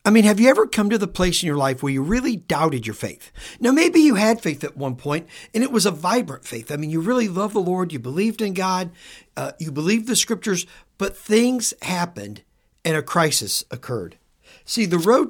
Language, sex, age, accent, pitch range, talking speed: English, male, 50-69, American, 150-220 Hz, 230 wpm